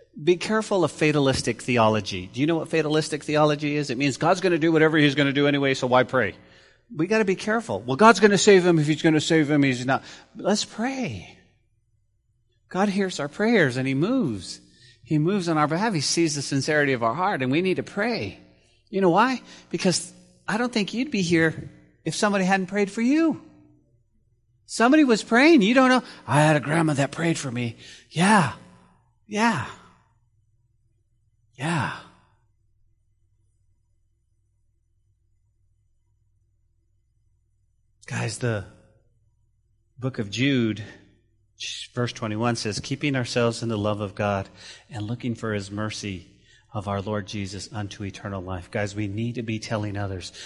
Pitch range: 105-155 Hz